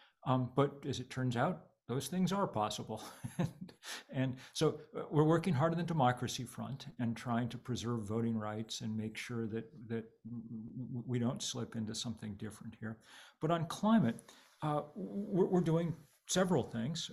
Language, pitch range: English, 115-135 Hz